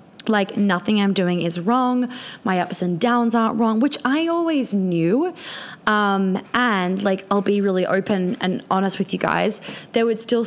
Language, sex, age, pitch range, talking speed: English, female, 20-39, 185-225 Hz, 180 wpm